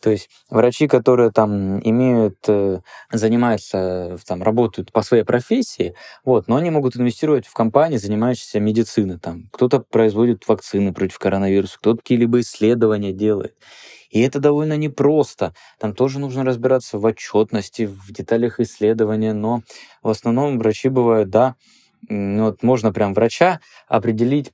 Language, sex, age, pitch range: Russian, male, 20-39, 105-130 Hz